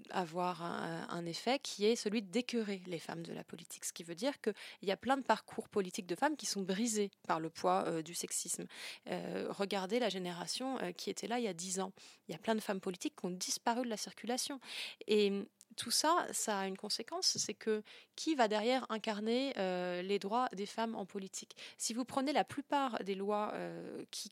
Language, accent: French, French